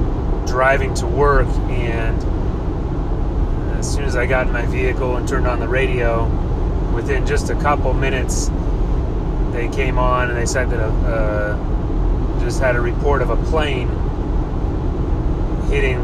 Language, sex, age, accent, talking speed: English, male, 30-49, American, 140 wpm